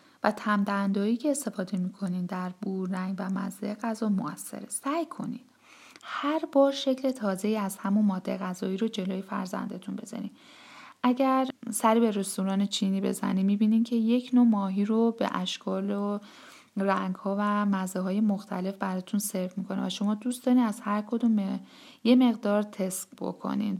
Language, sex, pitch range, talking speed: Persian, female, 190-230 Hz, 160 wpm